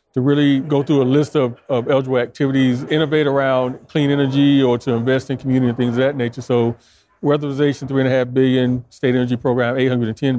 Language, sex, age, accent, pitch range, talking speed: English, male, 40-59, American, 120-135 Hz, 220 wpm